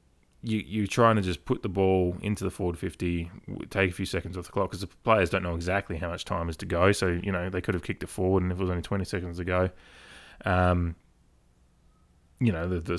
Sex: male